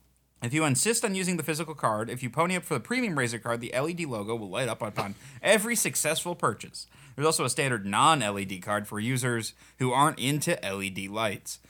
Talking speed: 205 wpm